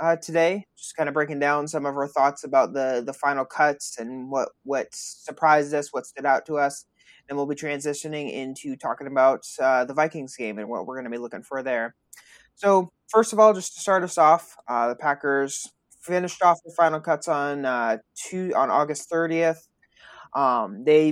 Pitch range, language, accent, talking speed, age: 135-165 Hz, English, American, 200 wpm, 20-39